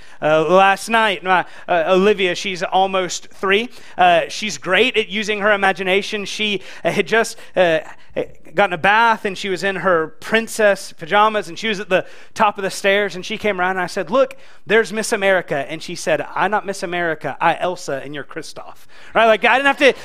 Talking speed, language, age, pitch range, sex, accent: 205 wpm, English, 30-49, 180-230 Hz, male, American